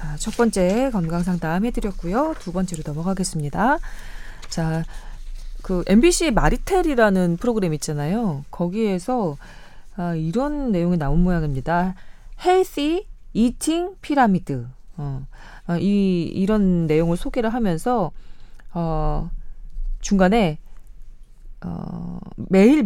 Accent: native